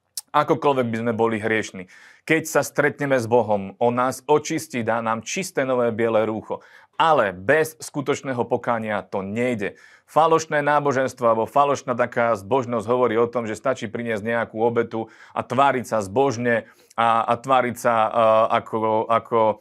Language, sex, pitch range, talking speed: Slovak, male, 110-130 Hz, 155 wpm